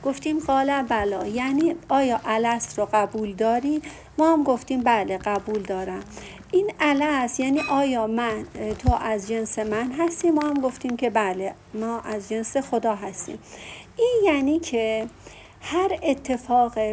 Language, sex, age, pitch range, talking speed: Persian, female, 50-69, 215-285 Hz, 140 wpm